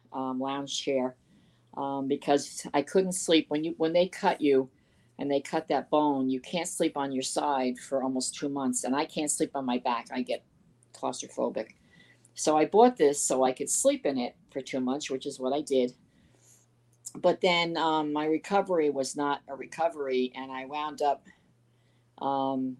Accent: American